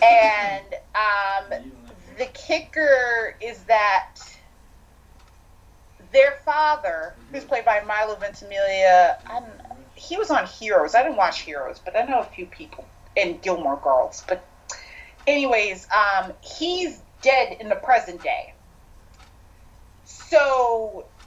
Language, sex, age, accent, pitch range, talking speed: English, female, 30-49, American, 185-275 Hz, 115 wpm